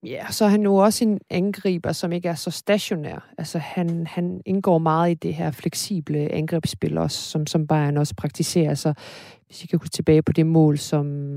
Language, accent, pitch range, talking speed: Danish, native, 145-170 Hz, 205 wpm